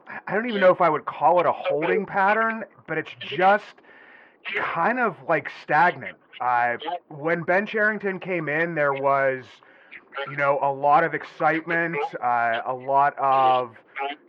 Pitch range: 135-180 Hz